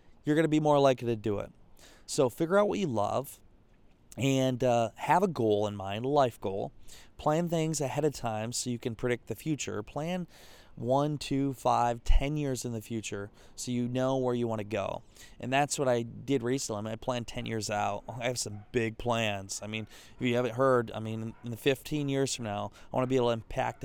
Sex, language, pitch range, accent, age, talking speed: male, English, 110-135 Hz, American, 20-39, 225 wpm